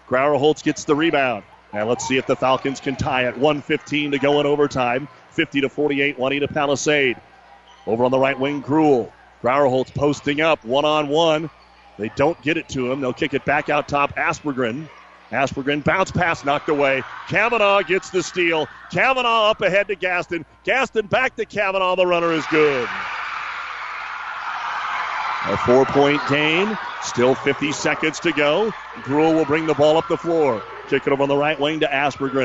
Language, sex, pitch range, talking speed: English, male, 140-180 Hz, 170 wpm